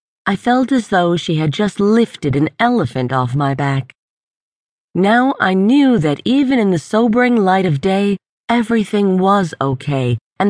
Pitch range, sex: 150-220 Hz, female